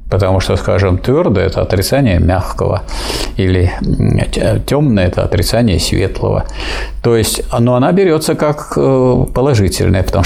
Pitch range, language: 100-130 Hz, Russian